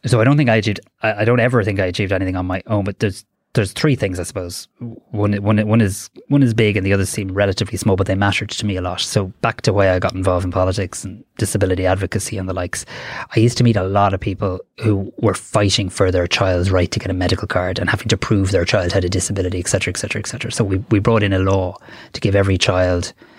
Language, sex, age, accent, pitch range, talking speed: English, male, 20-39, Irish, 90-110 Hz, 260 wpm